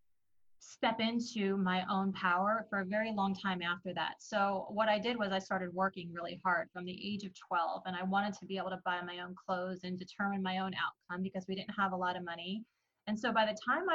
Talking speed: 240 wpm